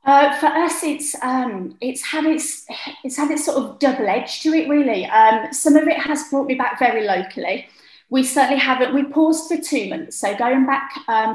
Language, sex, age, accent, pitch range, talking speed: English, female, 30-49, British, 205-265 Hz, 210 wpm